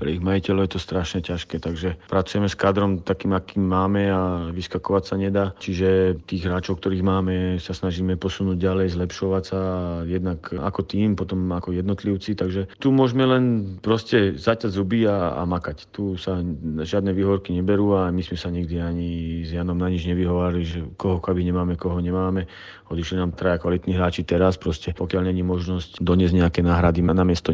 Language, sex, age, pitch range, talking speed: Slovak, male, 40-59, 90-100 Hz, 180 wpm